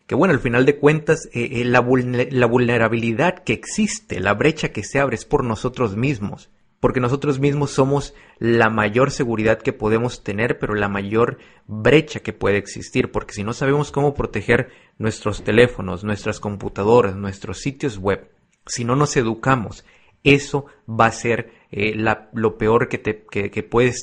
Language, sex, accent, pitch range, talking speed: Spanish, male, Mexican, 110-135 Hz, 165 wpm